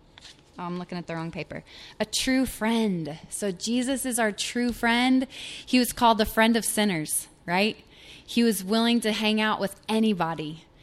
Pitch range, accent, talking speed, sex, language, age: 180-220 Hz, American, 170 wpm, female, English, 20-39